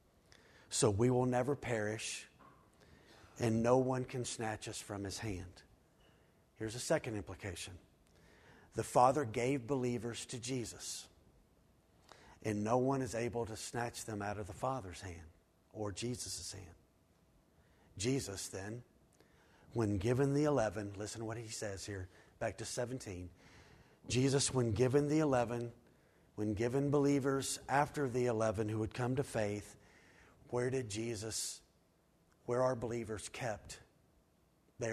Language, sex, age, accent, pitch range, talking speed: English, male, 50-69, American, 105-130 Hz, 135 wpm